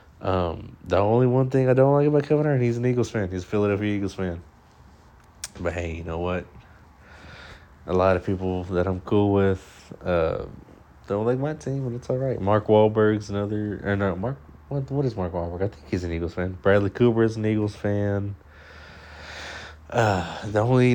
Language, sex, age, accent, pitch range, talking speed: English, male, 20-39, American, 85-105 Hz, 195 wpm